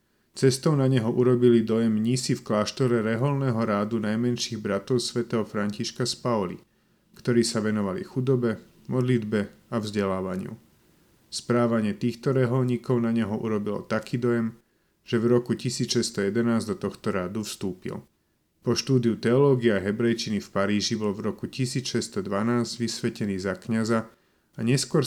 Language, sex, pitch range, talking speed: Slovak, male, 110-125 Hz, 130 wpm